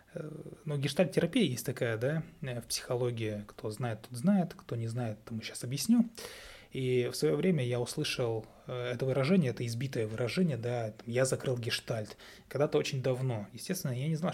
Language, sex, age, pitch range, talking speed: Russian, male, 20-39, 115-140 Hz, 165 wpm